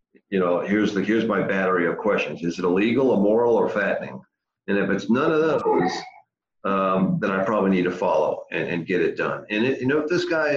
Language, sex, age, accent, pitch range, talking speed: English, male, 50-69, American, 85-125 Hz, 220 wpm